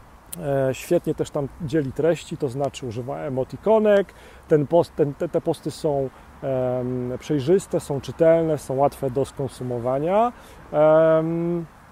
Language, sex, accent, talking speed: Polish, male, native, 125 wpm